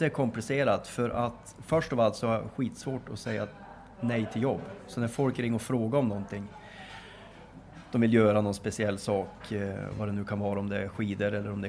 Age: 20-39